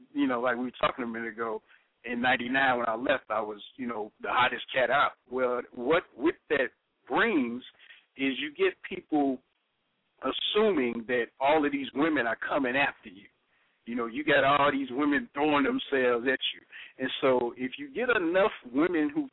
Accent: American